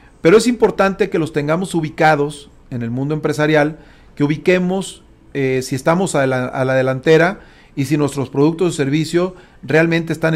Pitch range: 145-185 Hz